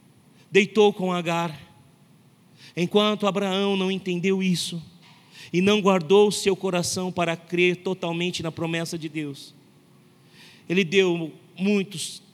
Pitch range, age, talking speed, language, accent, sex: 150-185 Hz, 40-59, 115 wpm, Portuguese, Brazilian, male